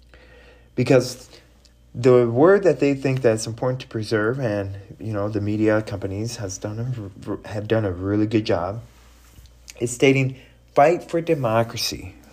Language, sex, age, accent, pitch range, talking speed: English, male, 30-49, American, 95-125 Hz, 145 wpm